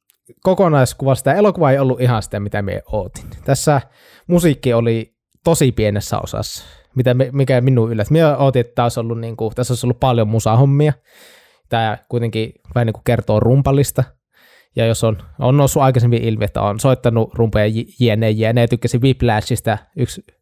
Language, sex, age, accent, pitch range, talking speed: Finnish, male, 20-39, native, 110-135 Hz, 140 wpm